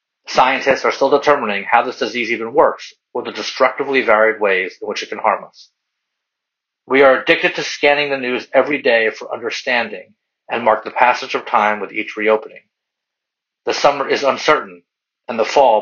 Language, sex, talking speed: English, male, 180 wpm